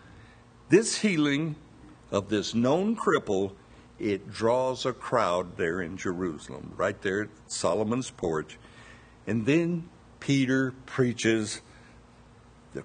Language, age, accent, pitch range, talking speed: English, 60-79, American, 110-130 Hz, 105 wpm